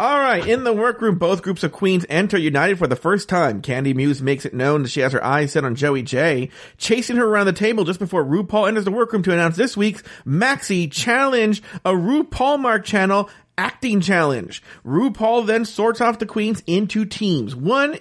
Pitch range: 135-200 Hz